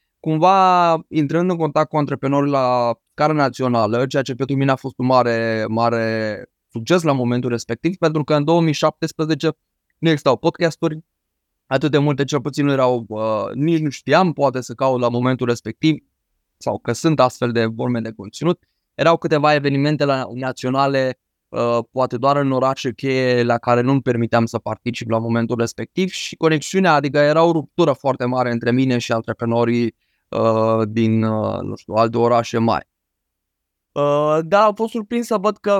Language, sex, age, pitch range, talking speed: Romanian, male, 20-39, 115-155 Hz, 165 wpm